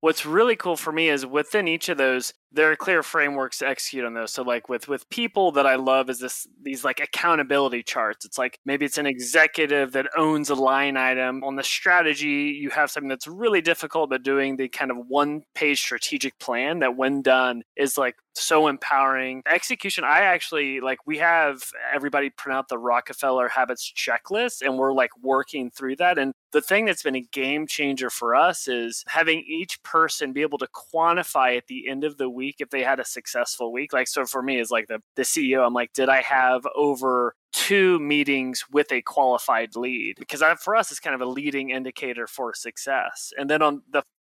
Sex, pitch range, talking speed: male, 130-160 Hz, 205 wpm